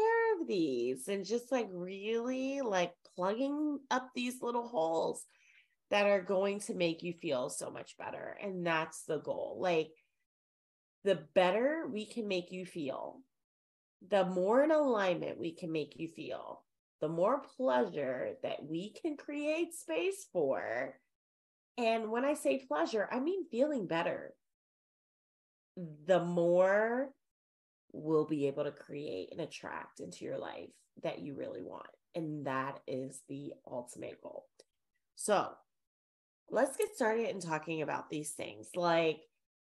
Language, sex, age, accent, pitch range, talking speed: English, female, 30-49, American, 165-260 Hz, 140 wpm